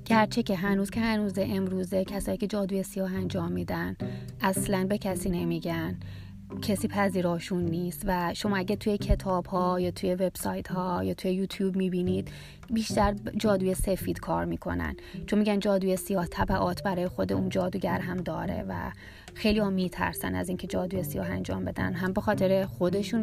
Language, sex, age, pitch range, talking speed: Persian, female, 30-49, 180-200 Hz, 165 wpm